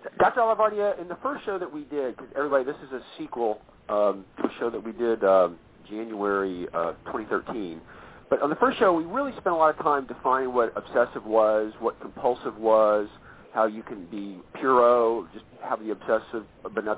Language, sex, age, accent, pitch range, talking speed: English, male, 40-59, American, 100-130 Hz, 200 wpm